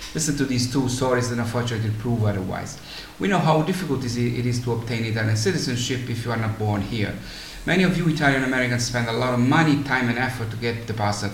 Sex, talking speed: male, 205 wpm